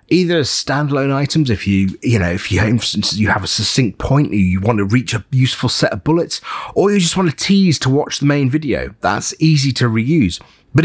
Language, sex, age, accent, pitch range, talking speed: English, male, 30-49, British, 105-155 Hz, 230 wpm